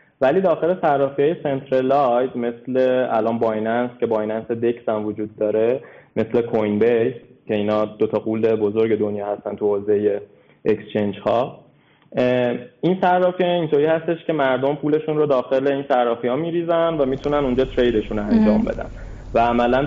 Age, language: 20-39, Persian